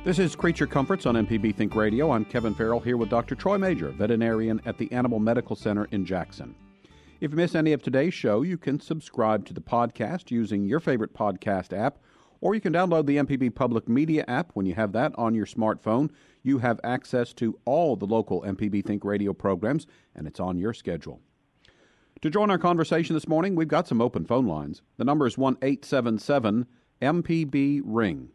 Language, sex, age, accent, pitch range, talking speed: English, male, 50-69, American, 110-145 Hz, 195 wpm